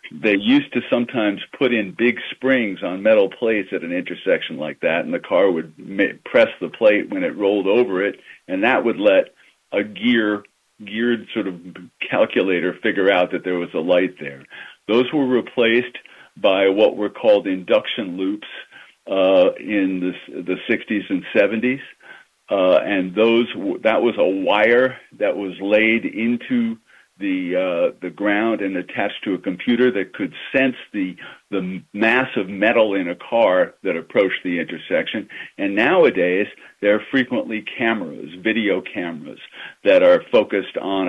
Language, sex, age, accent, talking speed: English, male, 50-69, American, 160 wpm